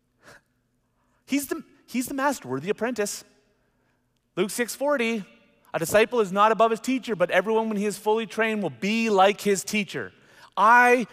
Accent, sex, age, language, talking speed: American, male, 40-59, English, 160 wpm